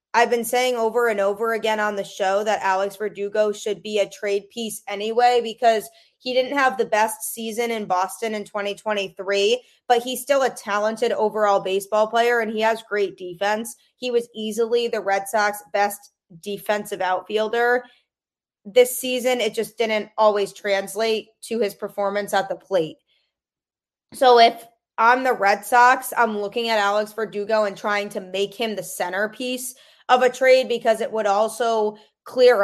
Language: English